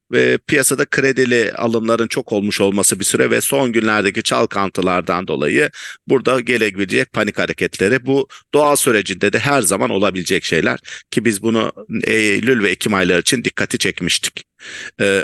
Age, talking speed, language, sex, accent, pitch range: 50-69, 145 wpm, English, male, Turkish, 110-140 Hz